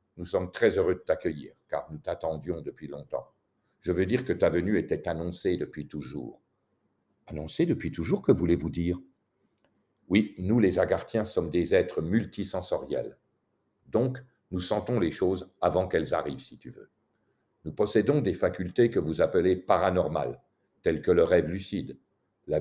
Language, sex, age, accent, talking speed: French, male, 60-79, French, 160 wpm